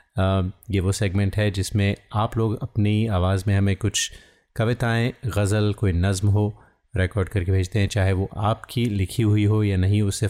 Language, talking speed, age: Hindi, 180 wpm, 30-49